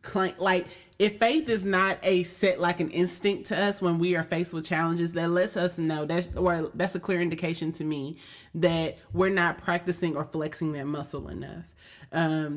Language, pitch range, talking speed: English, 165-200 Hz, 185 wpm